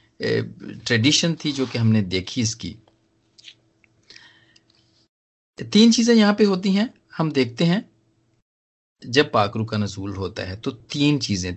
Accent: native